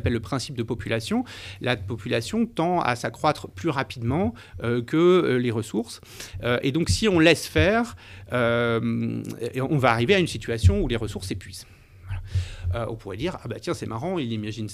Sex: male